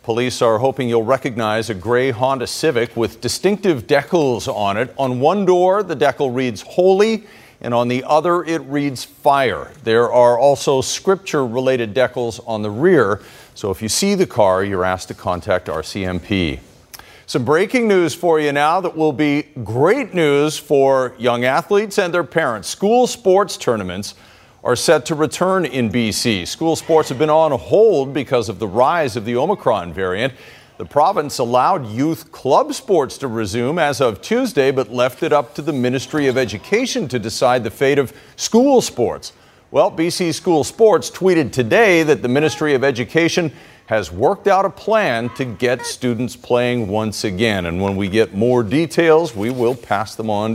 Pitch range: 115-160 Hz